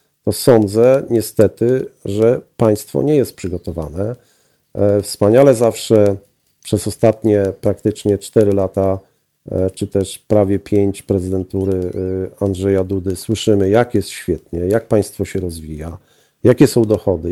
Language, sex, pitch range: Polish, male, 95-115 Hz